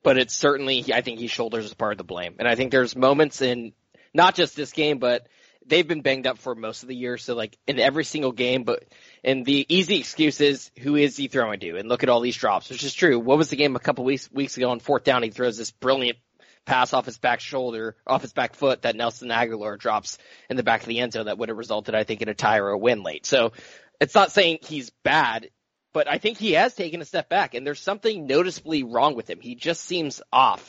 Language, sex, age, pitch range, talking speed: English, male, 20-39, 120-145 Hz, 260 wpm